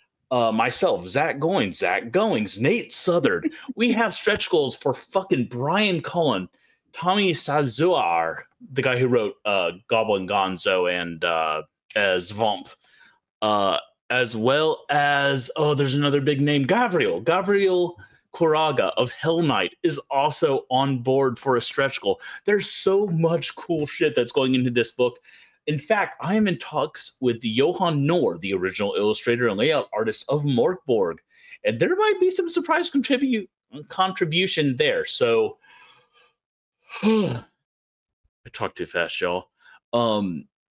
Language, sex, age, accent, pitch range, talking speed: English, male, 30-49, American, 120-195 Hz, 140 wpm